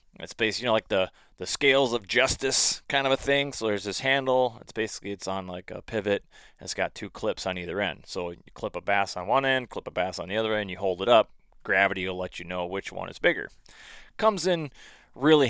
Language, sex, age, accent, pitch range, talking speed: English, male, 30-49, American, 100-130 Hz, 245 wpm